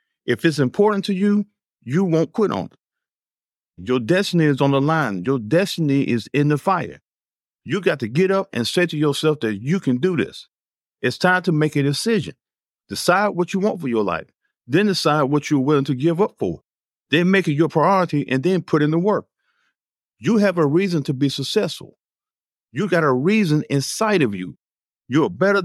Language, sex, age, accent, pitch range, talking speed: English, male, 50-69, American, 135-190 Hz, 200 wpm